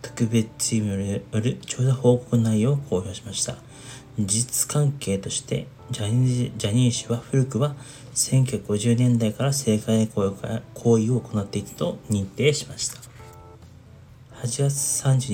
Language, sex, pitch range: Japanese, male, 110-130 Hz